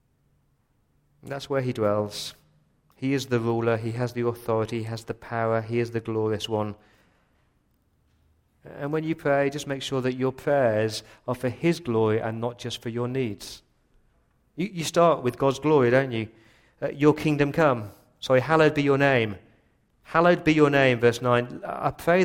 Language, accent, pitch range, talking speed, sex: English, British, 115-150 Hz, 180 wpm, male